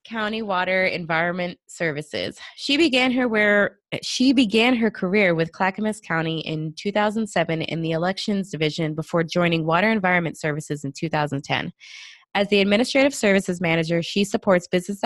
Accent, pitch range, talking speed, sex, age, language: American, 165-215 Hz, 145 wpm, female, 20-39, English